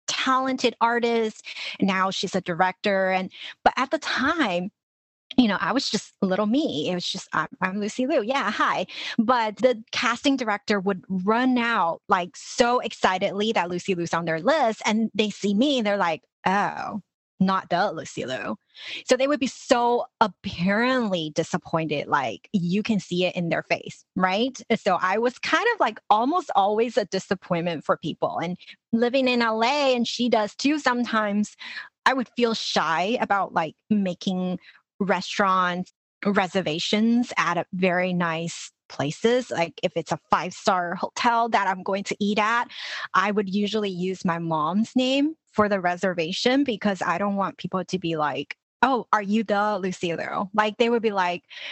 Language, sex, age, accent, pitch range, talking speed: English, female, 30-49, American, 185-235 Hz, 170 wpm